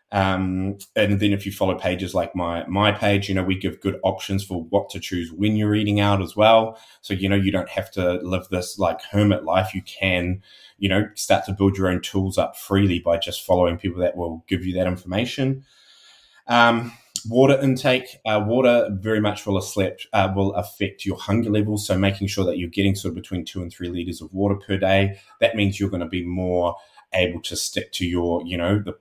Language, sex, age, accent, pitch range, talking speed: English, male, 20-39, Australian, 90-105 Hz, 225 wpm